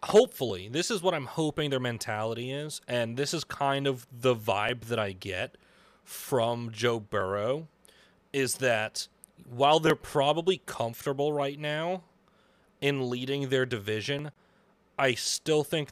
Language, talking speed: English, 140 wpm